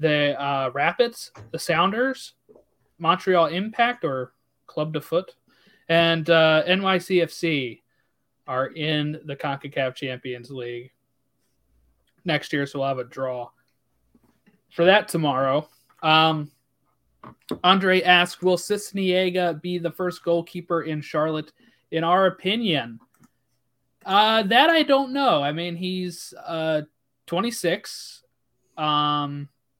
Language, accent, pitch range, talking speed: English, American, 140-180 Hz, 110 wpm